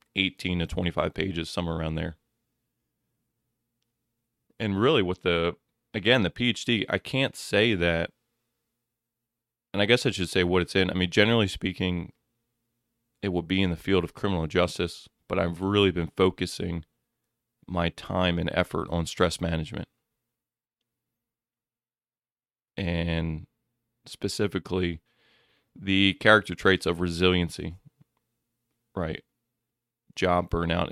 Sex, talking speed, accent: male, 120 wpm, American